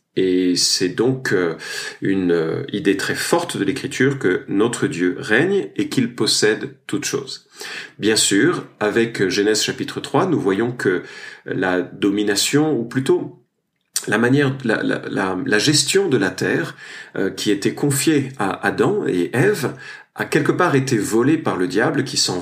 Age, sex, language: 40-59, male, French